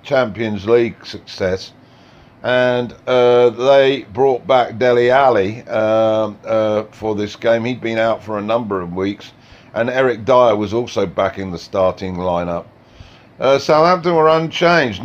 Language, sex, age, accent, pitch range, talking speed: English, male, 50-69, British, 115-140 Hz, 150 wpm